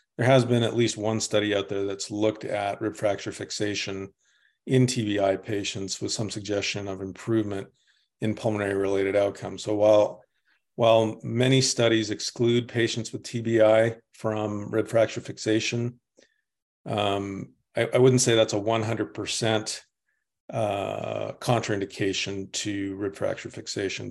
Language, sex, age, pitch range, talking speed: English, male, 40-59, 100-115 Hz, 130 wpm